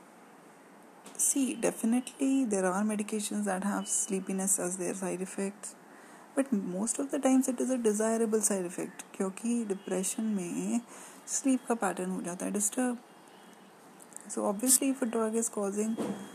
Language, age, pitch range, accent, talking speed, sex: English, 20-39, 190-240 Hz, Indian, 130 wpm, female